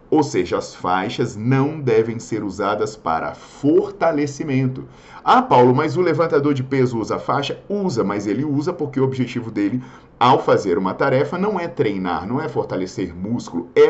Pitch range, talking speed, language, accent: 115-150 Hz, 170 wpm, Portuguese, Brazilian